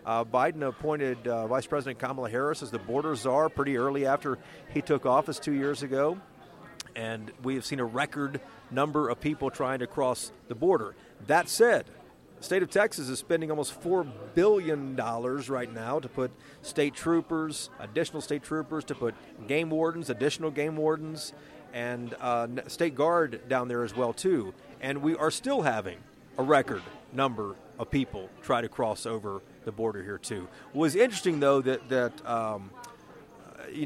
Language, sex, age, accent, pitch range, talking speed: English, male, 50-69, American, 115-150 Hz, 170 wpm